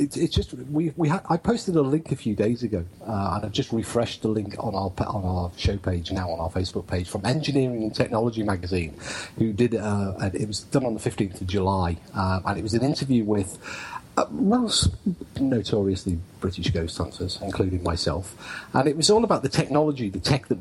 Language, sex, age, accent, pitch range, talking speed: English, male, 40-59, British, 95-120 Hz, 215 wpm